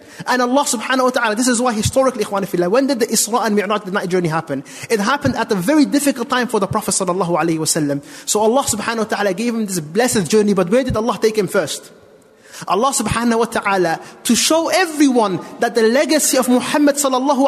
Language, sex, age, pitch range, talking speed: English, male, 30-49, 185-255 Hz, 210 wpm